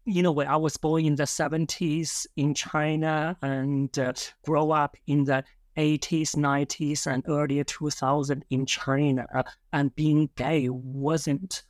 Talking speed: 155 wpm